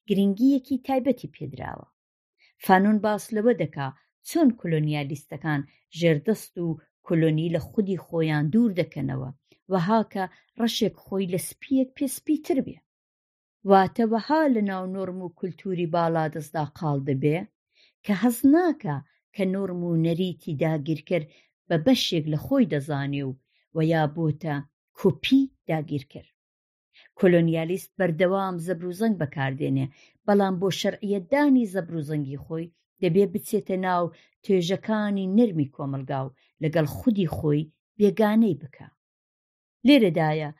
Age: 50-69